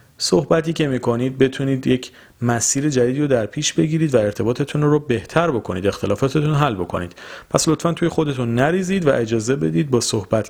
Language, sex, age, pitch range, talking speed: Persian, male, 40-59, 100-135 Hz, 165 wpm